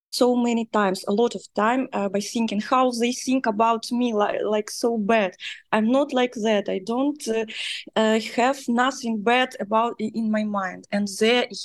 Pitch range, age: 210-250 Hz, 20-39